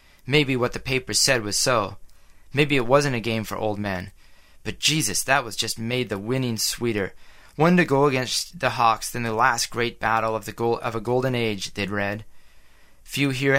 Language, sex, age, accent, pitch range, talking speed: English, male, 30-49, American, 110-130 Hz, 205 wpm